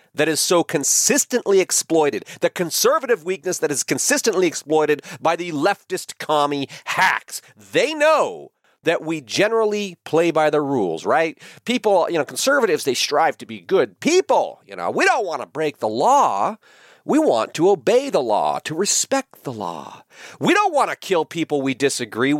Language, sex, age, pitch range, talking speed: English, male, 40-59, 145-235 Hz, 170 wpm